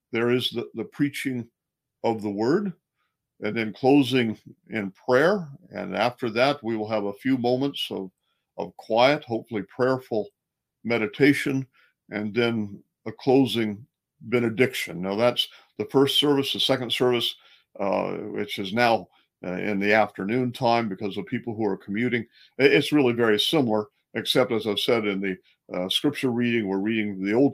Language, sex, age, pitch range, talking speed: English, male, 50-69, 100-125 Hz, 160 wpm